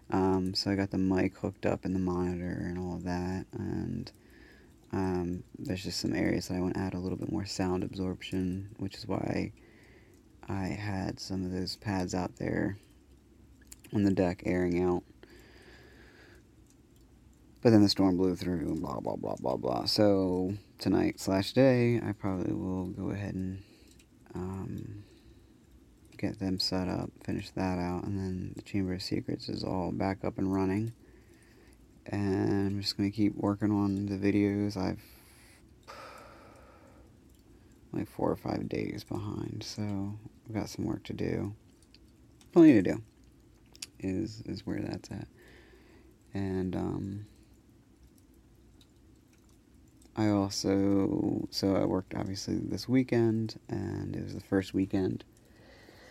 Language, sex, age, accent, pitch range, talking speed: English, male, 30-49, American, 95-105 Hz, 145 wpm